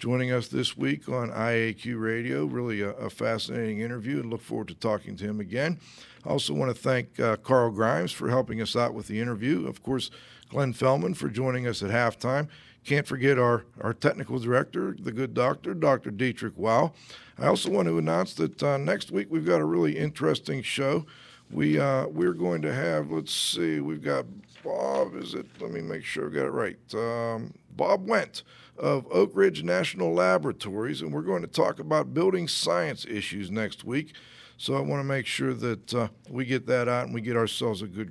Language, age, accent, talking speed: English, 50-69, American, 205 wpm